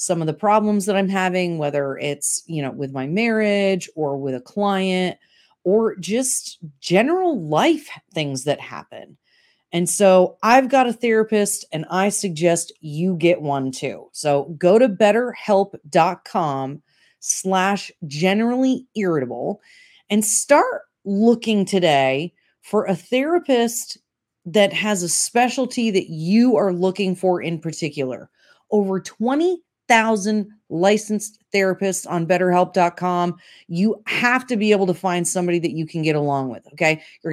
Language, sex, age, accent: English, female, 30-49, American